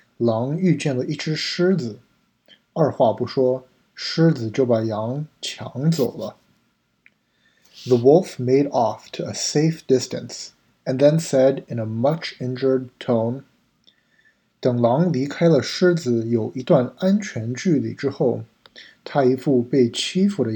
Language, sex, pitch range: Chinese, male, 120-155 Hz